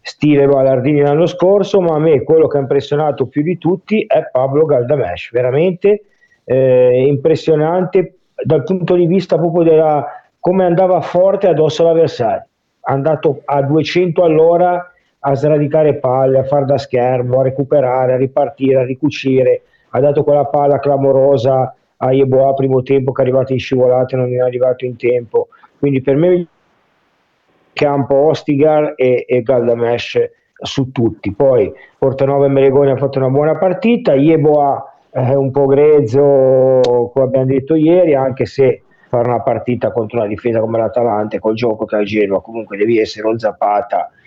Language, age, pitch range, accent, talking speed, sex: Italian, 40-59, 130-160 Hz, native, 165 wpm, male